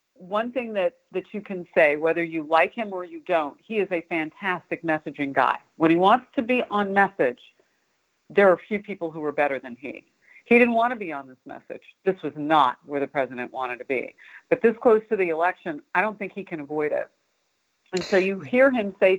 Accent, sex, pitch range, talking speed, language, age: American, female, 165-225 Hz, 225 wpm, English, 50-69